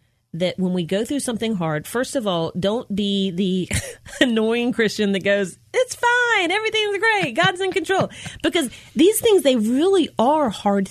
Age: 30-49